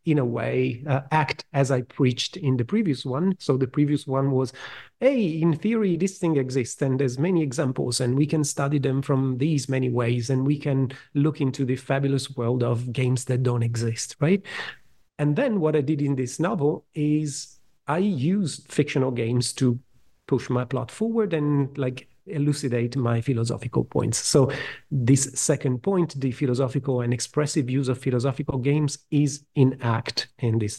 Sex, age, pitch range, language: male, 40-59, 125-150 Hz, English